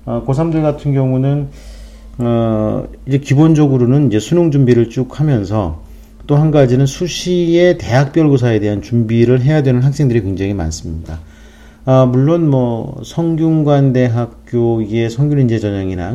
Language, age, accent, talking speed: English, 40-59, Korean, 100 wpm